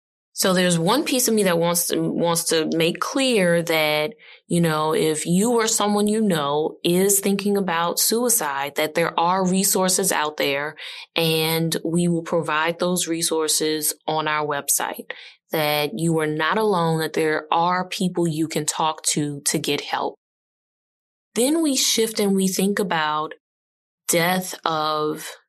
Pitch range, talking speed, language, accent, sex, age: 155-185 Hz, 155 wpm, English, American, female, 20-39